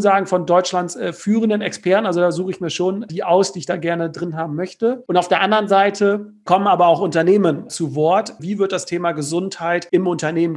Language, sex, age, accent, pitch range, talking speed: German, male, 40-59, German, 175-200 Hz, 215 wpm